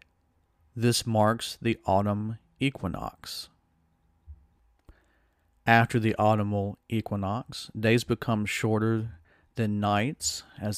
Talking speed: 85 wpm